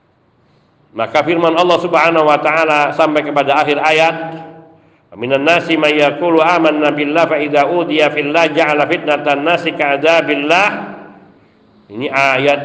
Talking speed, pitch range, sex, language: 120 wpm, 140-170 Hz, male, Indonesian